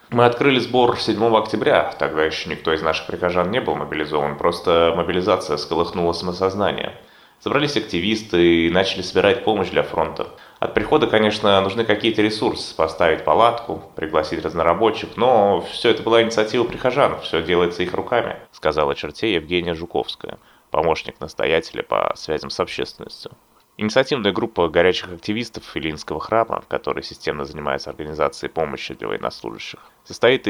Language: Russian